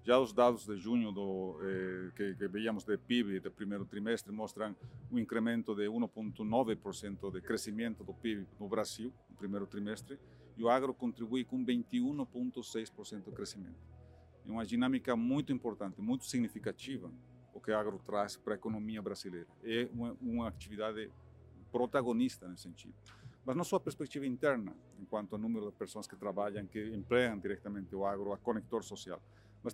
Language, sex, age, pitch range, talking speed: Portuguese, male, 40-59, 100-120 Hz, 165 wpm